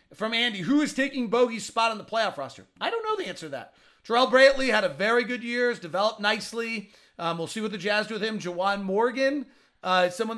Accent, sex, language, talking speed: American, male, English, 245 wpm